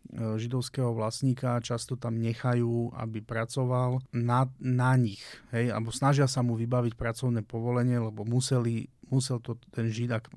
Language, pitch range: Slovak, 115-125 Hz